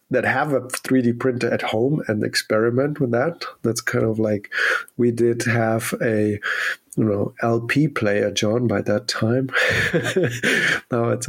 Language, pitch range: English, 115-135 Hz